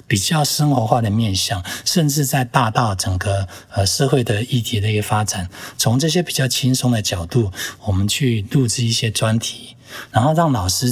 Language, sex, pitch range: Chinese, male, 100-130 Hz